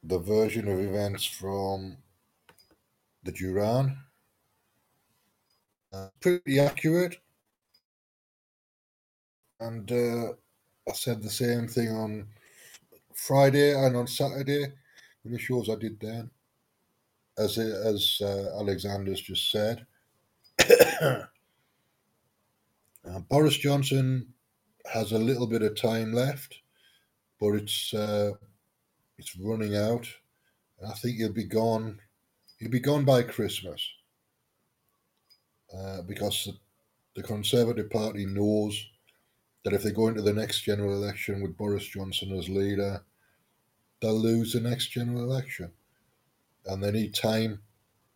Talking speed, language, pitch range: 110 wpm, English, 100-120 Hz